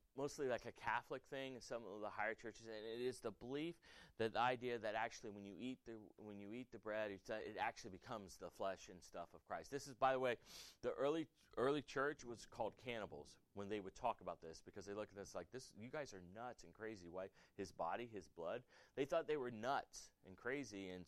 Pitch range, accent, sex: 95-125 Hz, American, male